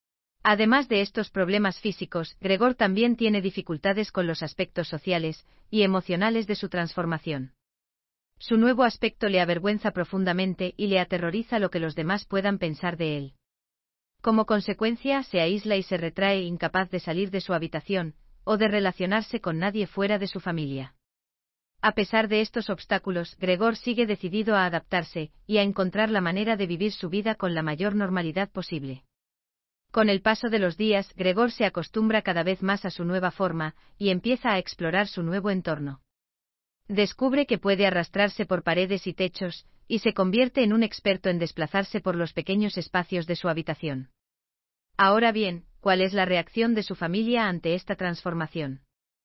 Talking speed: 170 wpm